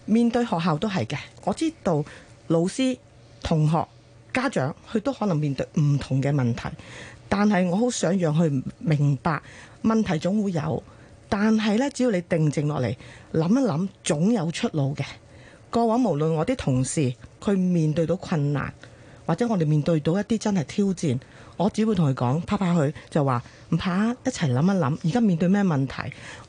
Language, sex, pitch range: Chinese, female, 145-225 Hz